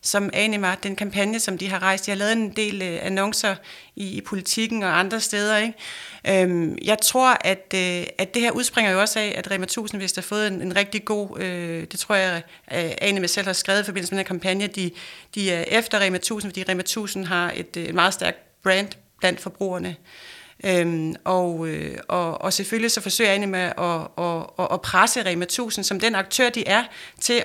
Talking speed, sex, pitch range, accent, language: 215 wpm, female, 185-215 Hz, native, Danish